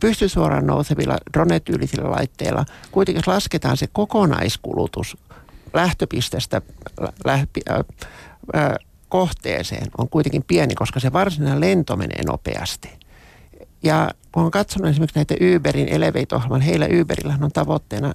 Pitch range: 125-180 Hz